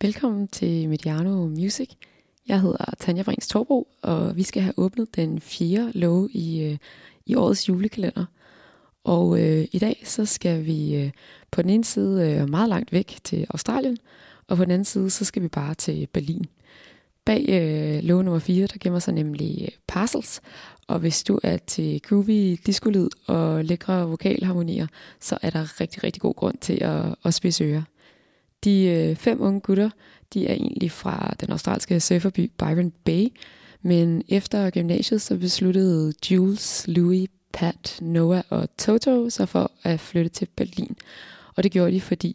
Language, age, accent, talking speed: Danish, 20-39, native, 165 wpm